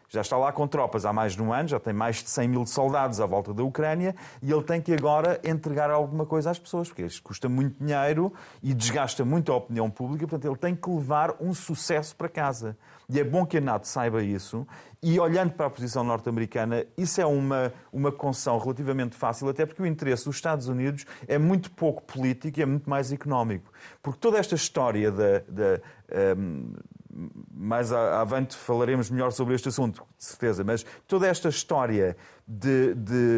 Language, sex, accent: Portuguese, male, Portuguese